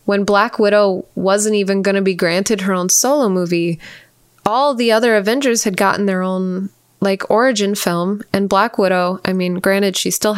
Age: 20-39